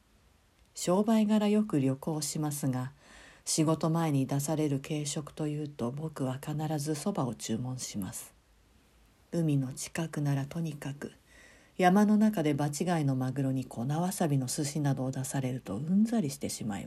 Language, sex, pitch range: Japanese, female, 135-160 Hz